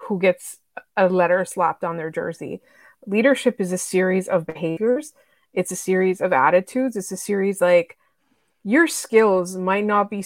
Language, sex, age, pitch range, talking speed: English, female, 20-39, 185-220 Hz, 165 wpm